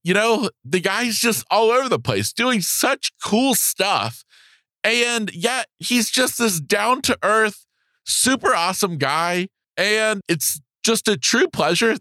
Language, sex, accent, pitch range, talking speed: English, male, American, 135-220 Hz, 150 wpm